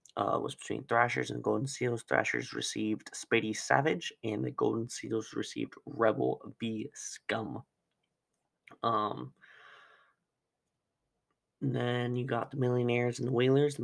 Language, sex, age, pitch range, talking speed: English, male, 20-39, 110-135 Hz, 130 wpm